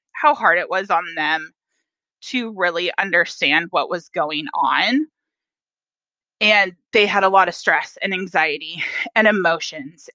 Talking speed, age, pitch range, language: 140 wpm, 20-39, 170-215 Hz, English